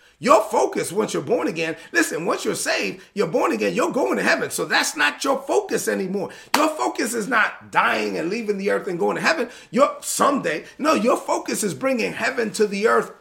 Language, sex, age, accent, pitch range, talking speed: English, male, 40-59, American, 165-255 Hz, 215 wpm